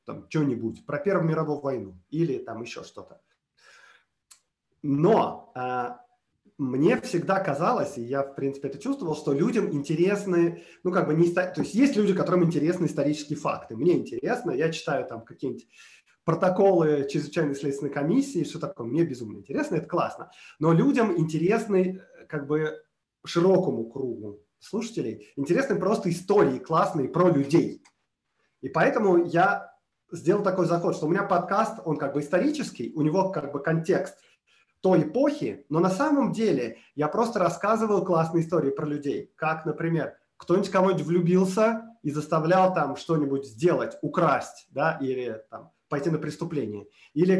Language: Russian